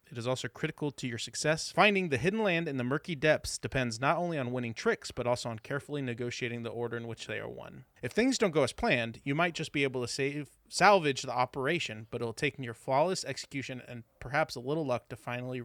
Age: 30-49